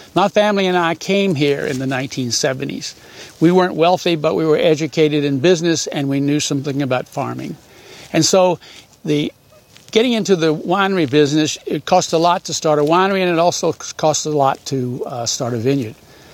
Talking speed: 185 wpm